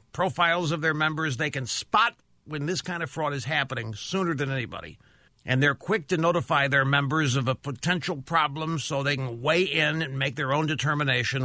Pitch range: 135-175 Hz